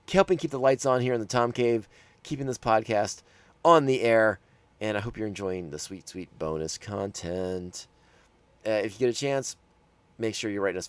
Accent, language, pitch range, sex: American, English, 95-135 Hz, male